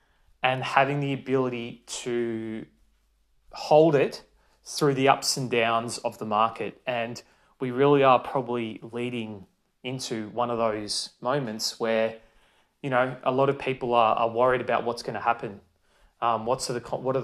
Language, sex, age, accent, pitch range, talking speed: English, male, 20-39, Australian, 115-130 Hz, 160 wpm